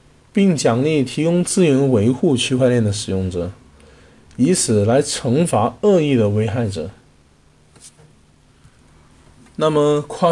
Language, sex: Chinese, male